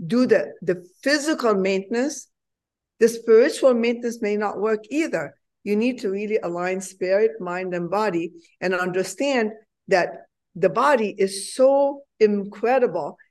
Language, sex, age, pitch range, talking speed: English, female, 50-69, 195-245 Hz, 130 wpm